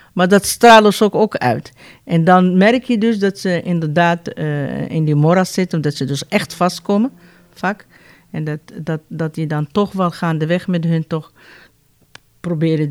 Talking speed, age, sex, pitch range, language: 180 wpm, 50-69, female, 160-195 Hz, Dutch